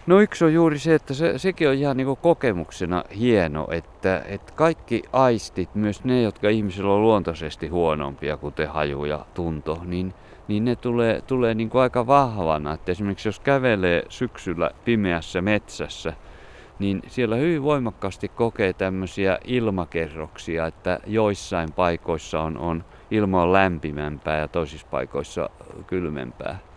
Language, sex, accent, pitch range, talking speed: Finnish, male, native, 90-120 Hz, 140 wpm